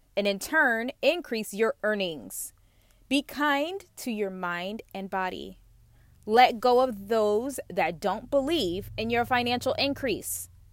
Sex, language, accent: female, English, American